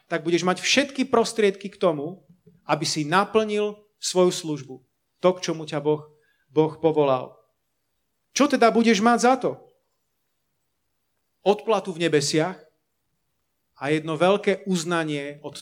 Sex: male